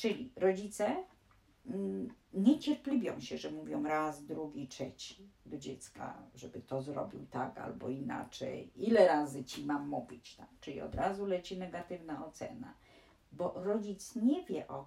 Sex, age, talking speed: female, 50-69, 145 wpm